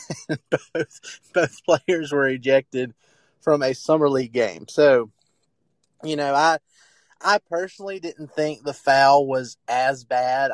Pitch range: 130-155 Hz